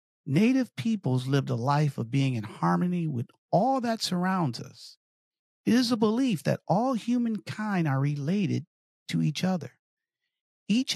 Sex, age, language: male, 50-69, English